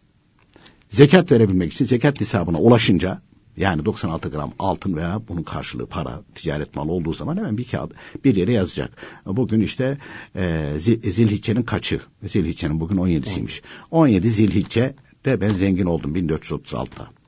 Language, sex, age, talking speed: Turkish, male, 60-79, 140 wpm